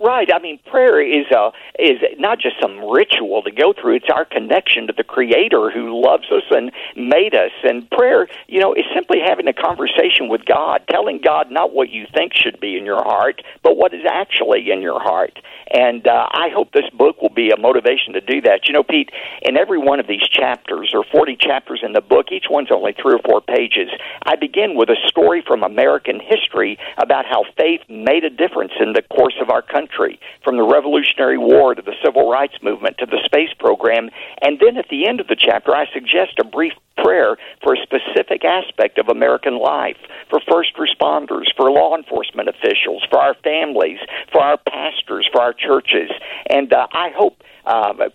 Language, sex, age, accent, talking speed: English, male, 50-69, American, 205 wpm